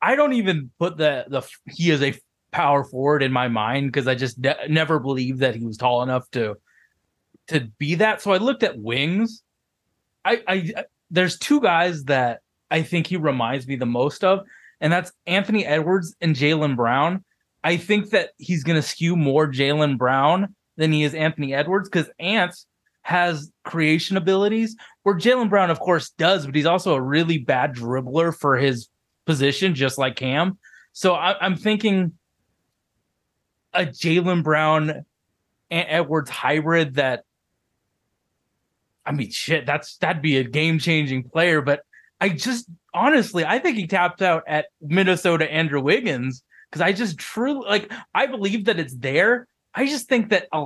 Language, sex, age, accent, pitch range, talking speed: English, male, 20-39, American, 145-190 Hz, 170 wpm